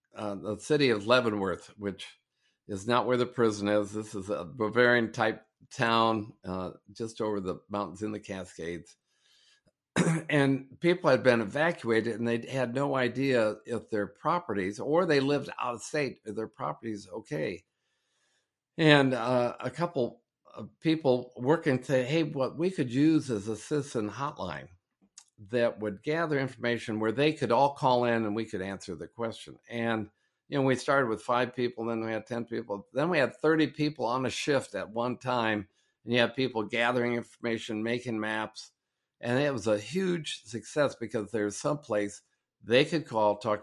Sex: male